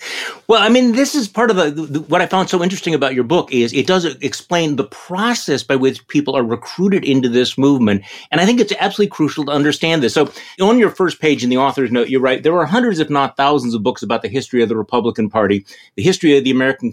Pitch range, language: 125-165 Hz, English